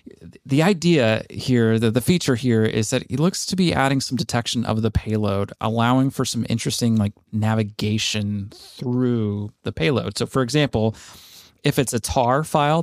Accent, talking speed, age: American, 170 wpm, 30-49